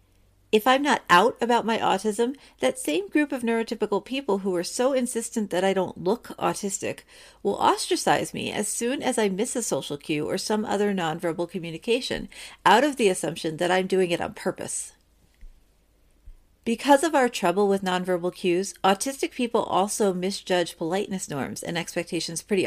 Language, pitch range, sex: English, 175-235 Hz, female